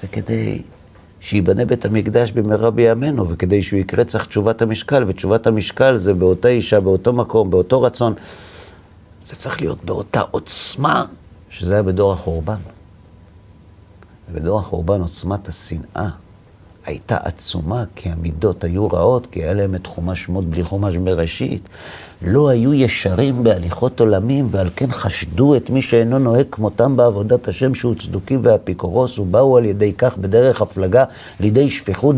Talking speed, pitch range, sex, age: 140 wpm, 90-115 Hz, male, 50-69